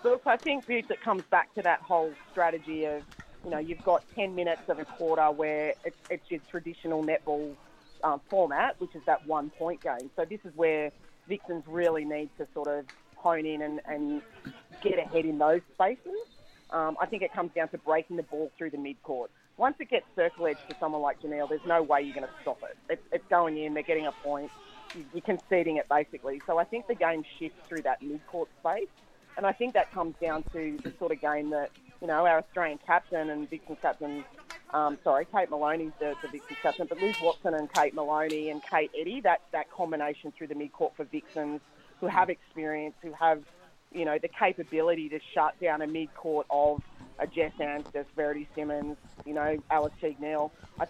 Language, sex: English, female